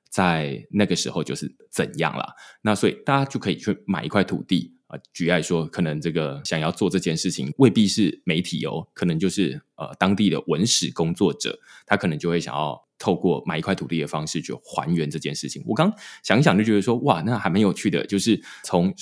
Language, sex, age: Chinese, male, 20-39